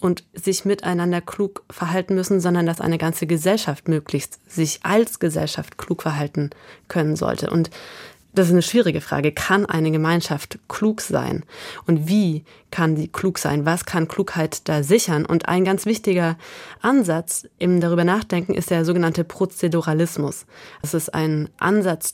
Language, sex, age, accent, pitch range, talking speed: German, female, 20-39, German, 160-190 Hz, 150 wpm